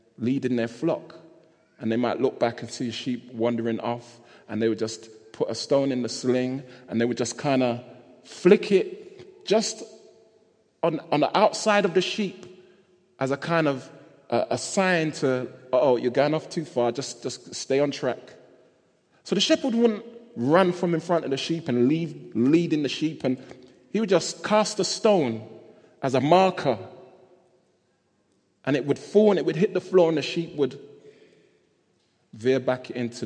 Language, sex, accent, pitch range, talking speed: English, male, British, 115-165 Hz, 180 wpm